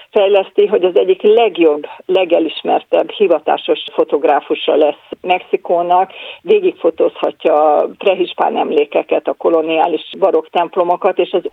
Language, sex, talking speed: Hungarian, female, 100 wpm